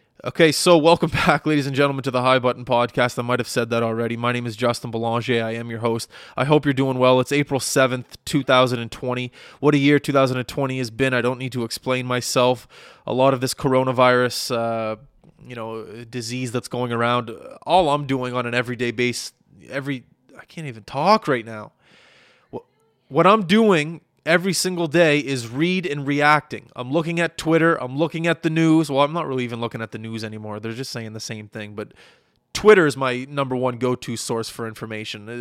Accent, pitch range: American, 115-145 Hz